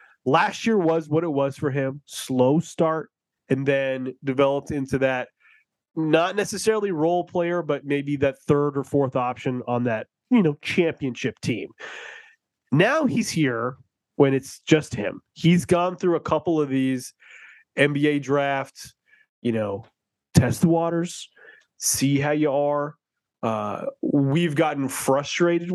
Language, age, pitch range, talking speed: English, 30-49, 135-170 Hz, 140 wpm